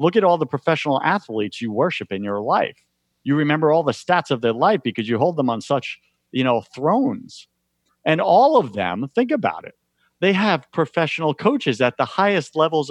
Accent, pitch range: American, 115-165 Hz